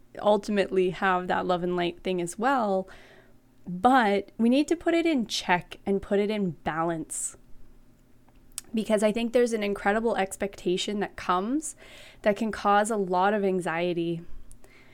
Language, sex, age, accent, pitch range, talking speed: English, female, 20-39, American, 180-230 Hz, 155 wpm